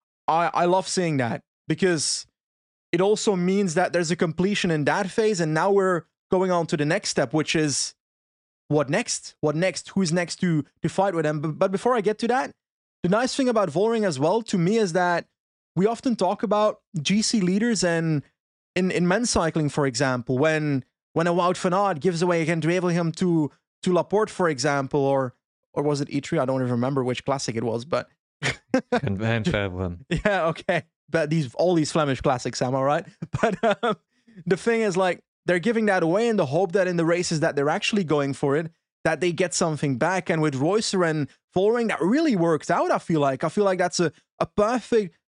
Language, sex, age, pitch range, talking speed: English, male, 20-39, 155-205 Hz, 205 wpm